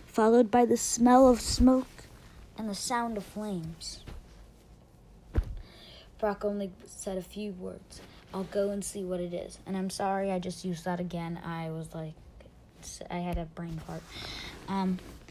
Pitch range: 195-250 Hz